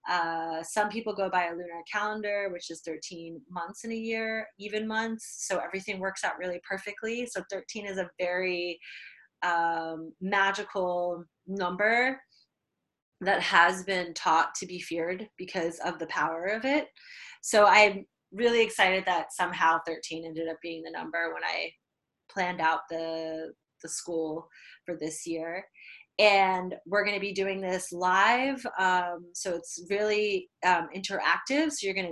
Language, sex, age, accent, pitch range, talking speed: English, female, 20-39, American, 175-210 Hz, 155 wpm